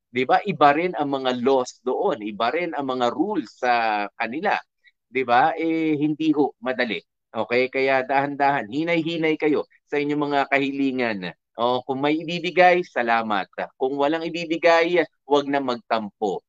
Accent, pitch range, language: native, 130-165 Hz, Filipino